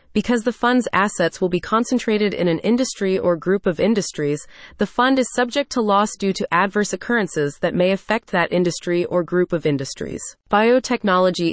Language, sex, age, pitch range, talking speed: English, female, 30-49, 170-225 Hz, 175 wpm